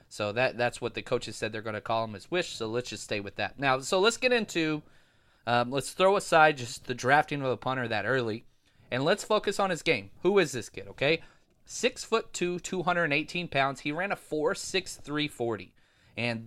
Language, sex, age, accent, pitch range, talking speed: English, male, 30-49, American, 115-150 Hz, 225 wpm